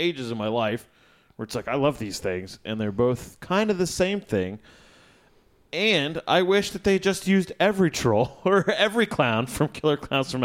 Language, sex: English, male